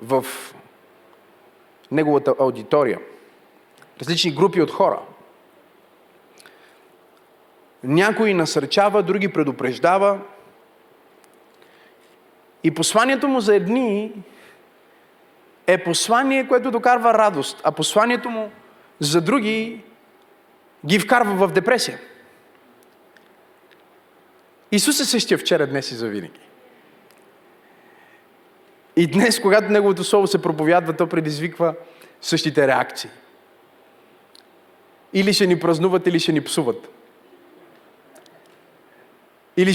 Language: Bulgarian